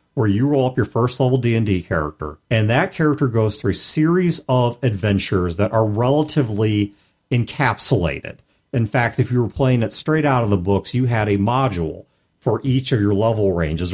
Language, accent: English, American